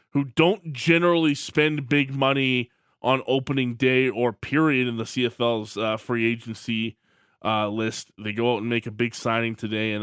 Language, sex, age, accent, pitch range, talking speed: English, male, 20-39, American, 115-130 Hz, 175 wpm